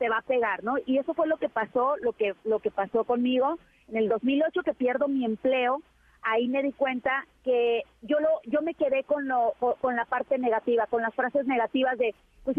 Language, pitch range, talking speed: Spanish, 240-305 Hz, 220 wpm